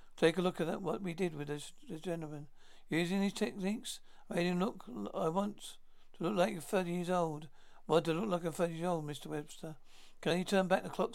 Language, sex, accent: English, male, British